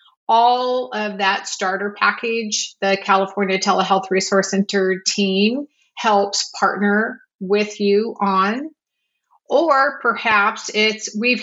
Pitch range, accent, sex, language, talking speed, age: 195-230 Hz, American, female, English, 105 wpm, 40-59